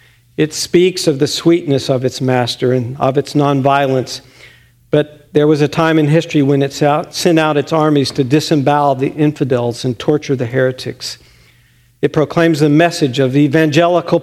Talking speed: 165 wpm